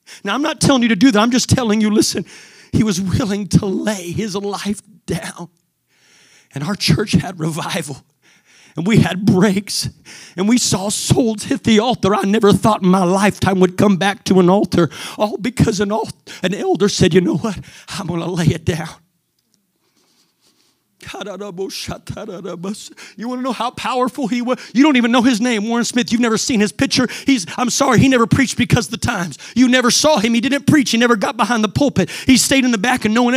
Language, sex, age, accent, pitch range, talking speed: English, male, 40-59, American, 190-240 Hz, 210 wpm